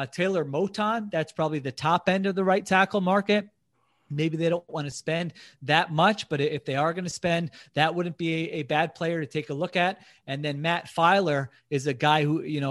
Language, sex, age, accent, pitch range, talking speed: English, male, 30-49, American, 145-170 Hz, 225 wpm